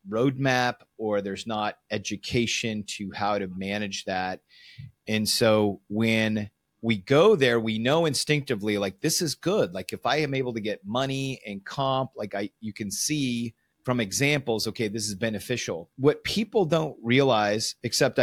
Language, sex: English, male